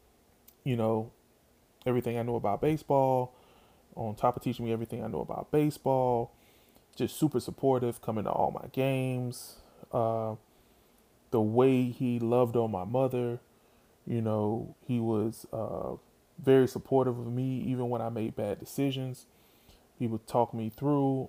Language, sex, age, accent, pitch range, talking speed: English, male, 20-39, American, 110-130 Hz, 150 wpm